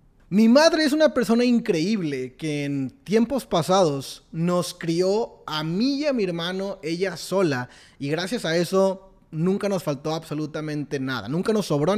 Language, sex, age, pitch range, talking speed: Spanish, male, 20-39, 145-190 Hz, 160 wpm